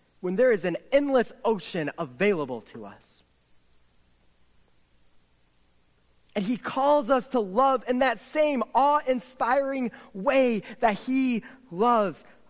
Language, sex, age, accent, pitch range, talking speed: English, male, 30-49, American, 205-270 Hz, 110 wpm